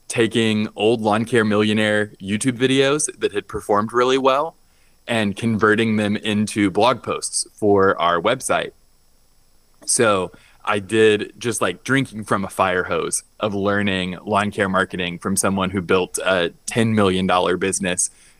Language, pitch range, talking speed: English, 95-115 Hz, 145 wpm